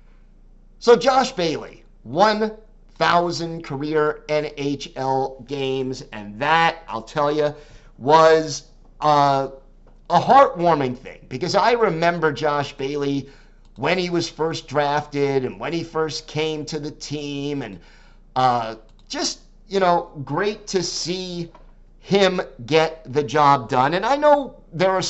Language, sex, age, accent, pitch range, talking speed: English, male, 50-69, American, 145-185 Hz, 125 wpm